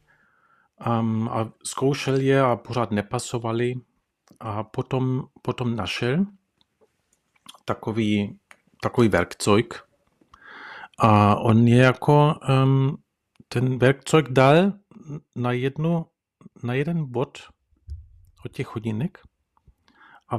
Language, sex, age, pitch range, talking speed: Czech, male, 40-59, 110-140 Hz, 85 wpm